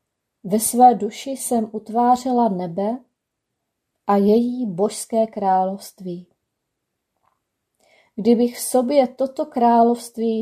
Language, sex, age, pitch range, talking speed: Czech, female, 30-49, 200-245 Hz, 85 wpm